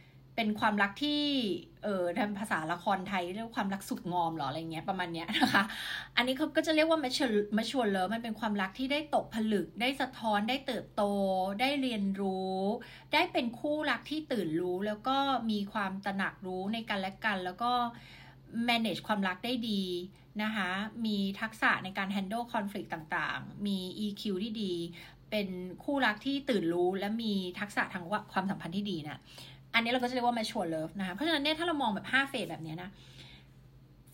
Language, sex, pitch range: Thai, female, 185-250 Hz